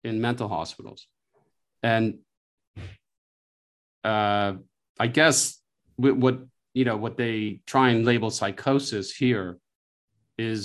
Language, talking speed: English, 100 wpm